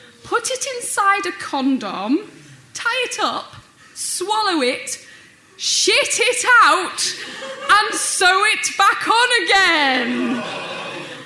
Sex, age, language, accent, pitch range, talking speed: female, 10-29, English, British, 230-315 Hz, 100 wpm